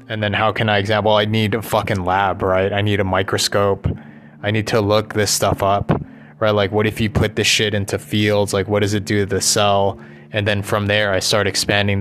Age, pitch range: 20-39, 105-125 Hz